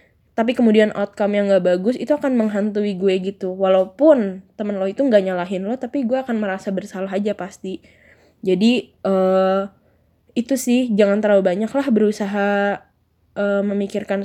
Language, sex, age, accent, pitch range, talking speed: Indonesian, female, 10-29, native, 190-215 Hz, 150 wpm